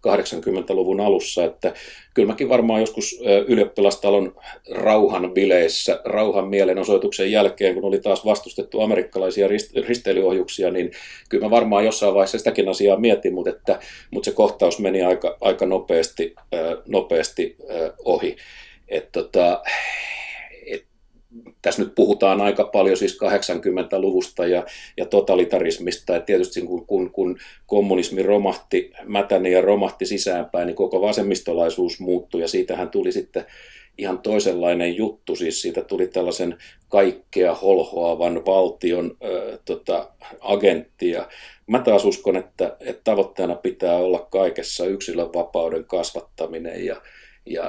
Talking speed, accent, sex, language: 120 wpm, native, male, Finnish